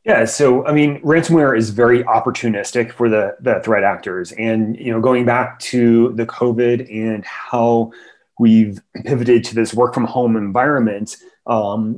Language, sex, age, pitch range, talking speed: English, male, 30-49, 115-130 Hz, 160 wpm